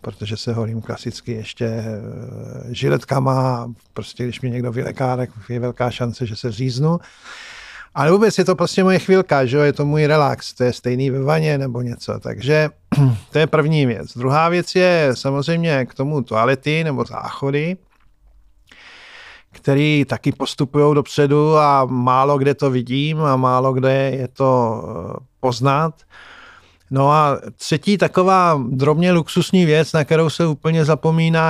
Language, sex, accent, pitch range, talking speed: Czech, male, native, 125-155 Hz, 150 wpm